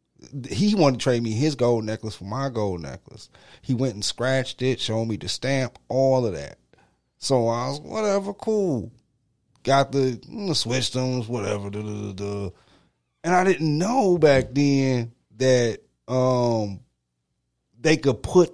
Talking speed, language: 160 wpm, English